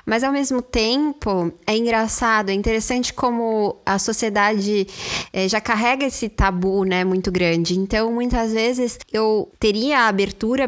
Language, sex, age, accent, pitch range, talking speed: Portuguese, female, 10-29, Brazilian, 195-230 Hz, 145 wpm